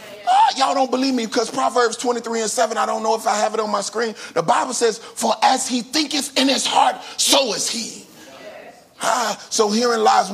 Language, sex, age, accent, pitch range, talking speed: English, male, 30-49, American, 135-220 Hz, 215 wpm